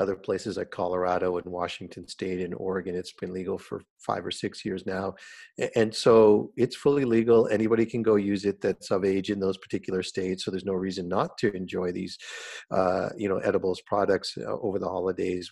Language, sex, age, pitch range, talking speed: English, male, 50-69, 95-130 Hz, 200 wpm